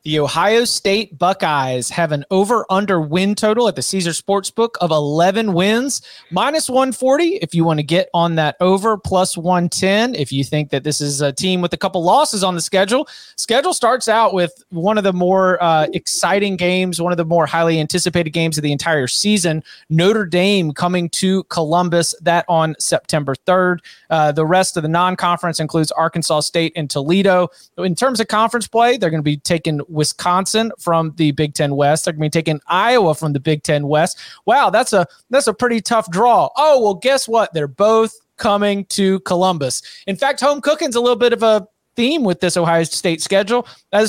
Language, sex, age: English, male, 30-49